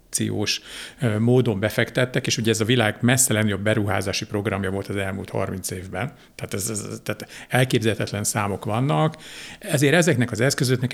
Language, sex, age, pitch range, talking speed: Hungarian, male, 60-79, 110-135 Hz, 155 wpm